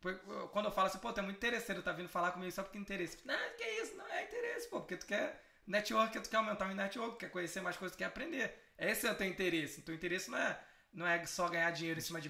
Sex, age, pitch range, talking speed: male, 20-39, 175-215 Hz, 290 wpm